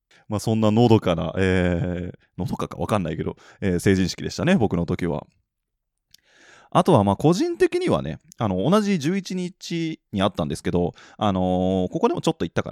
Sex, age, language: male, 20-39, Japanese